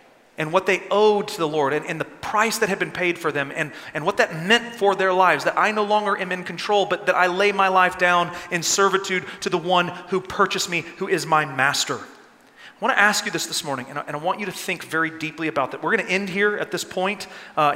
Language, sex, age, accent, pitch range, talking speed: English, male, 30-49, American, 170-225 Hz, 270 wpm